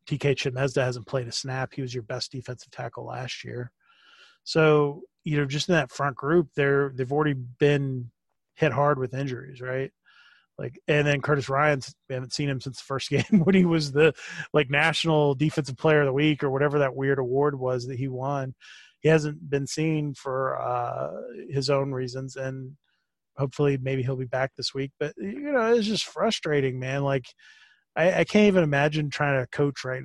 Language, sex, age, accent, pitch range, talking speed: English, male, 30-49, American, 130-155 Hz, 195 wpm